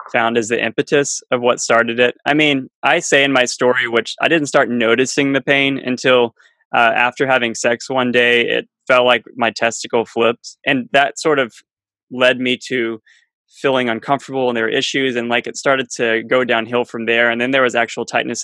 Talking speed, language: 205 wpm, English